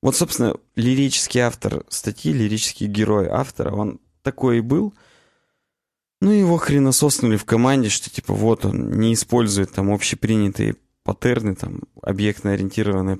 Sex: male